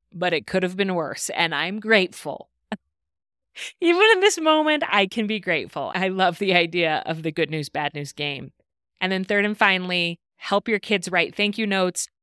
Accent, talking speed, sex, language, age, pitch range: American, 195 wpm, female, English, 30-49, 160-200 Hz